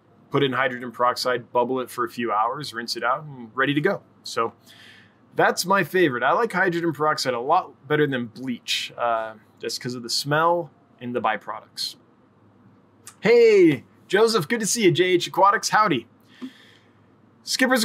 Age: 20-39